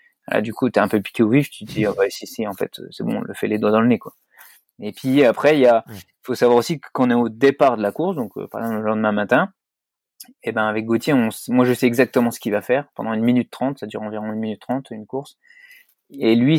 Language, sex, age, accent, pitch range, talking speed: French, male, 20-39, French, 115-140 Hz, 295 wpm